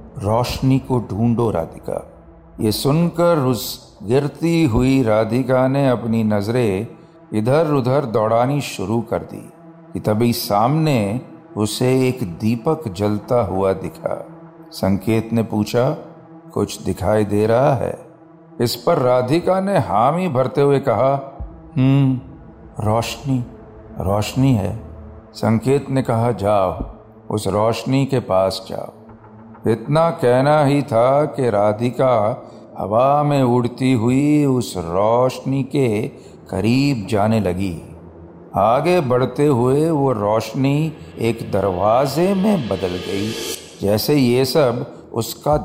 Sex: male